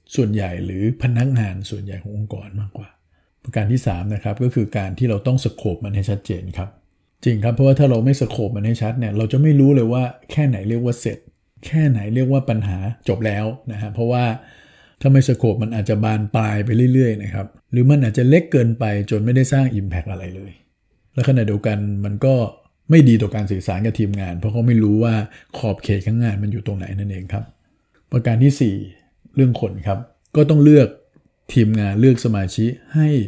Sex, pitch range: male, 100-125 Hz